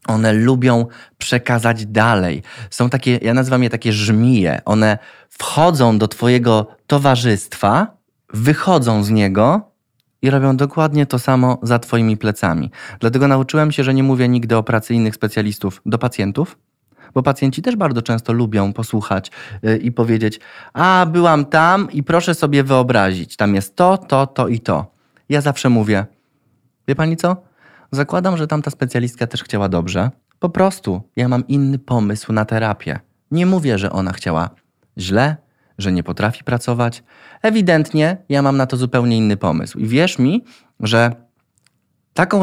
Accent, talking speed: native, 150 wpm